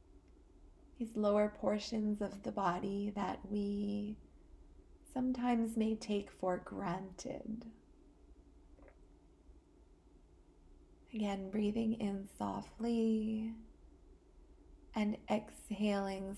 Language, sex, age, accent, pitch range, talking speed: English, female, 20-39, American, 185-230 Hz, 70 wpm